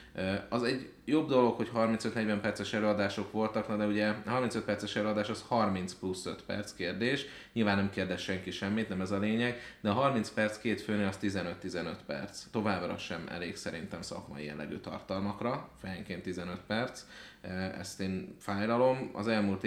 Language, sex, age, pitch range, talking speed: Hungarian, male, 30-49, 95-110 Hz, 160 wpm